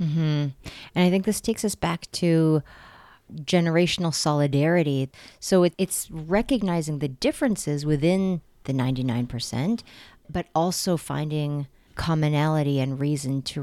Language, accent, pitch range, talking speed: English, American, 145-180 Hz, 120 wpm